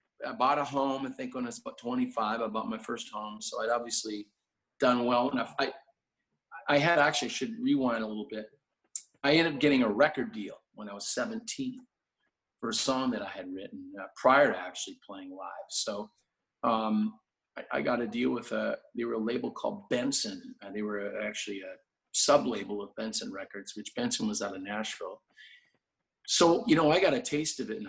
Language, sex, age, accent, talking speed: English, male, 40-59, American, 200 wpm